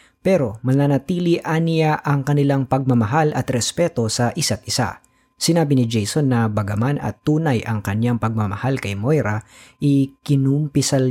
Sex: female